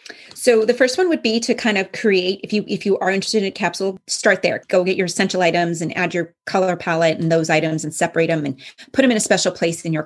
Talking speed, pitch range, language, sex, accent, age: 275 wpm, 170-220 Hz, English, female, American, 30-49